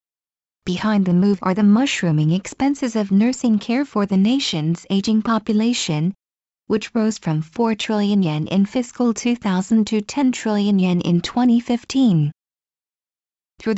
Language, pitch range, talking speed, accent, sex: English, 190-235 Hz, 135 wpm, American, female